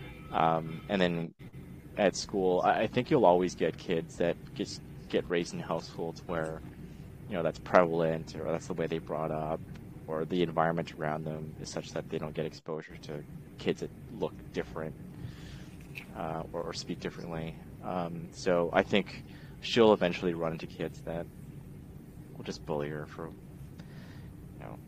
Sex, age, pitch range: male, 30-49, 80-90 Hz